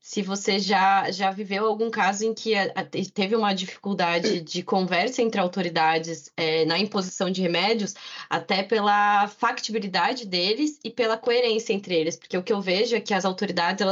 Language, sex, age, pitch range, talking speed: Portuguese, female, 20-39, 170-215 Hz, 165 wpm